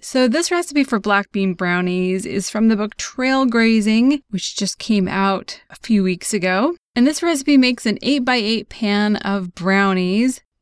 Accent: American